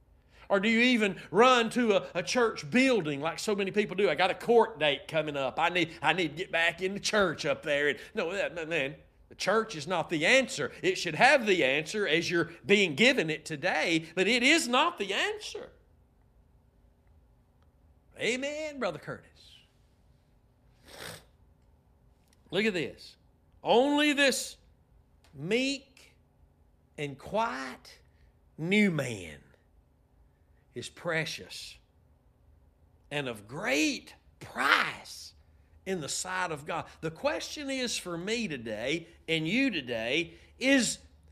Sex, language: male, English